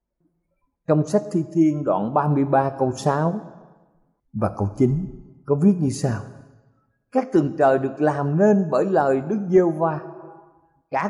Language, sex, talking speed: Vietnamese, male, 145 wpm